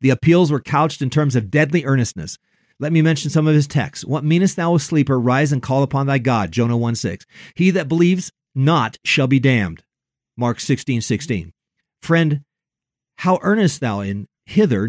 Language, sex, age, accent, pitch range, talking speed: English, male, 50-69, American, 125-175 Hz, 185 wpm